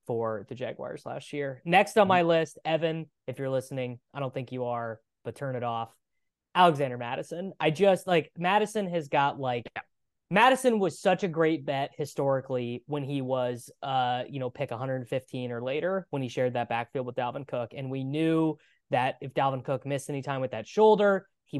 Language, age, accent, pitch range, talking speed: English, 20-39, American, 125-160 Hz, 195 wpm